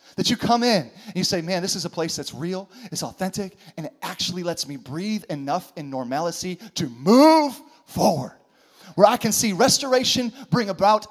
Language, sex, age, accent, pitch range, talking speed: English, male, 30-49, American, 170-230 Hz, 190 wpm